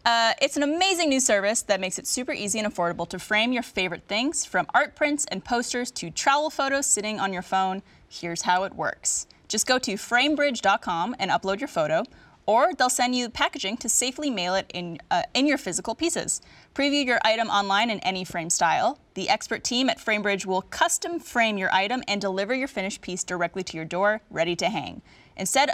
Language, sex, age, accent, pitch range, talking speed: English, female, 10-29, American, 180-245 Hz, 205 wpm